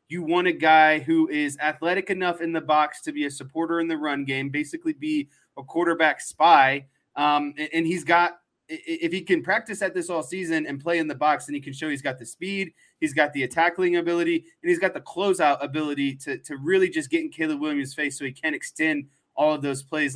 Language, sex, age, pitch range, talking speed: English, male, 20-39, 140-170 Hz, 230 wpm